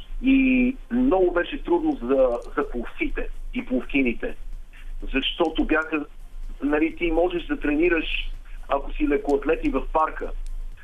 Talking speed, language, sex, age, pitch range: 115 wpm, Bulgarian, male, 50-69, 125-180 Hz